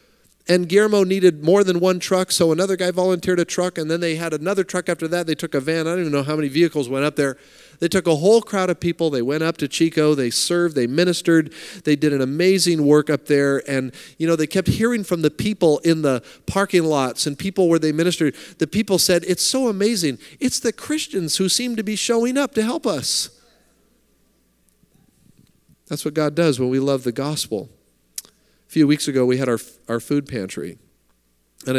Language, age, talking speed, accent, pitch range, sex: English, 40-59, 215 wpm, American, 130-170 Hz, male